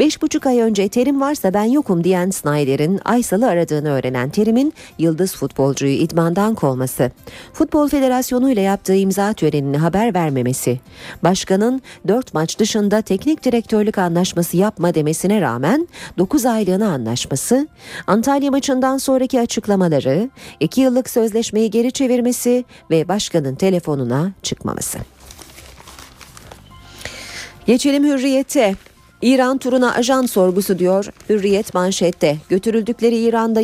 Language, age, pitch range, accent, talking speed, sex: Turkish, 40-59, 160-235 Hz, native, 110 wpm, female